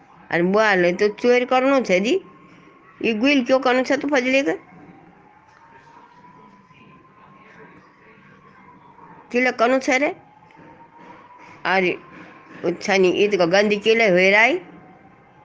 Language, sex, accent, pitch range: Hindi, female, native, 185-240 Hz